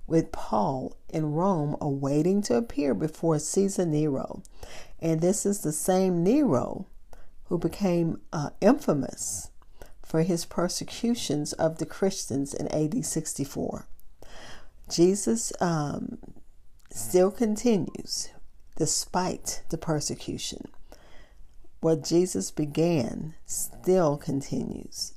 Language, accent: English, American